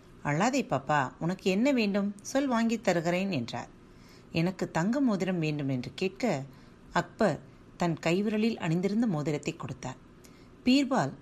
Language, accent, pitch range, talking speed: Tamil, native, 145-205 Hz, 120 wpm